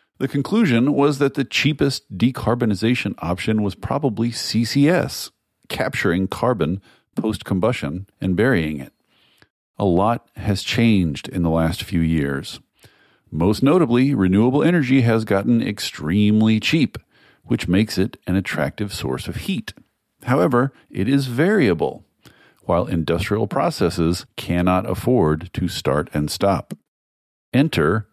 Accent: American